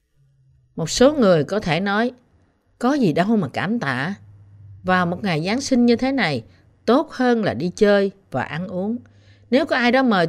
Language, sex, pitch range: Vietnamese, female, 155-230 Hz